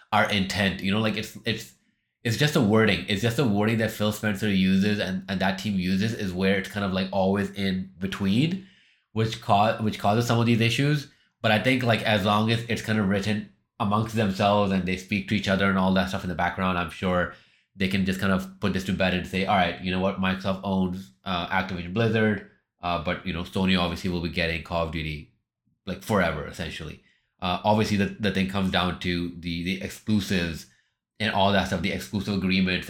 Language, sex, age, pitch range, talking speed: English, male, 20-39, 95-105 Hz, 225 wpm